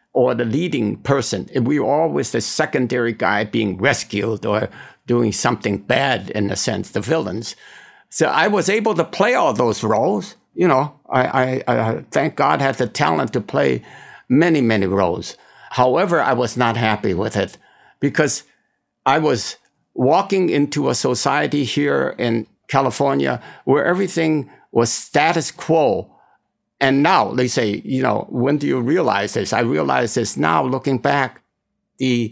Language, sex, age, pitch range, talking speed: English, male, 60-79, 115-140 Hz, 160 wpm